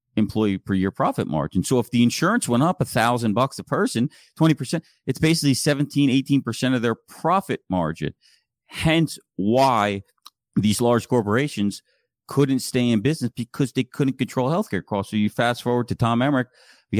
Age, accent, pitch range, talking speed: 40-59, American, 100-130 Hz, 170 wpm